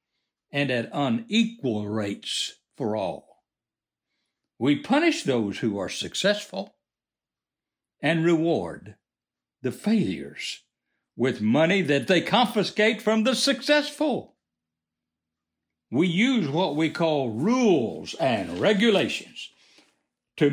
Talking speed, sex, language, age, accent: 95 wpm, male, English, 60-79, American